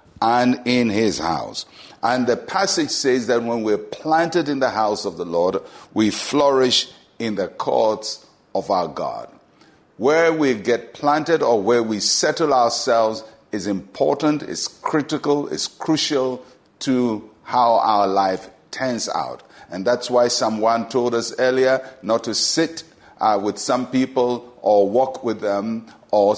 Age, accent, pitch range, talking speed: 50-69, Nigerian, 110-140 Hz, 150 wpm